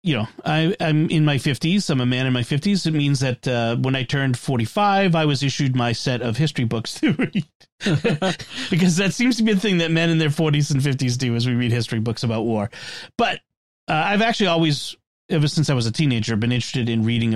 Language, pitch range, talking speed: English, 125-170 Hz, 230 wpm